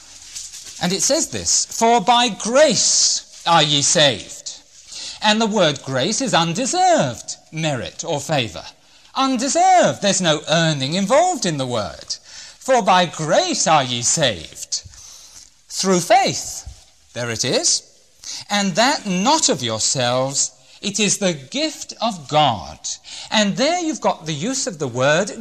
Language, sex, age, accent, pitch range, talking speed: English, male, 40-59, British, 150-255 Hz, 135 wpm